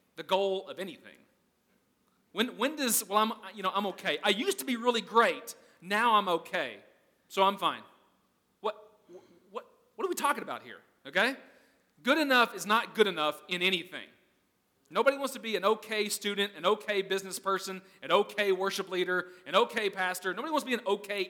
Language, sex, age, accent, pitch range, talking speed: English, male, 30-49, American, 190-235 Hz, 185 wpm